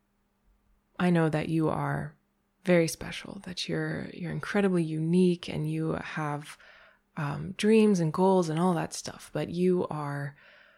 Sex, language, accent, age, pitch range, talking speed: female, English, American, 20-39, 145-180 Hz, 145 wpm